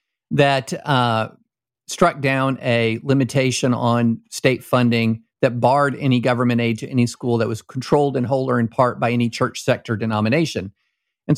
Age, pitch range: 50-69, 120-155 Hz